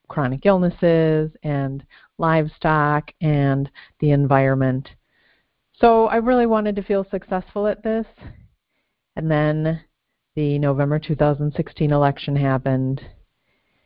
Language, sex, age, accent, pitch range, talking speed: English, female, 40-59, American, 150-175 Hz, 100 wpm